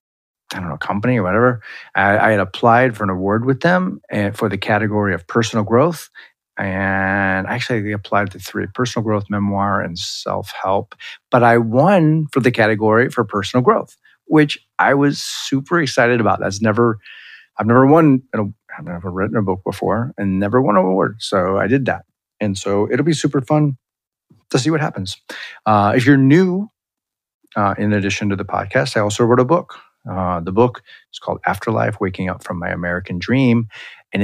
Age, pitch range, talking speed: 40-59, 95-120 Hz, 185 wpm